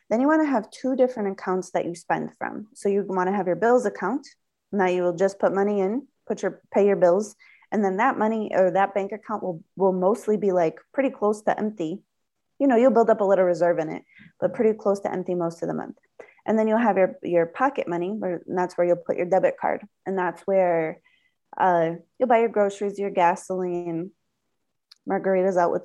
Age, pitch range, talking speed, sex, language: 20-39, 175-210 Hz, 225 wpm, female, English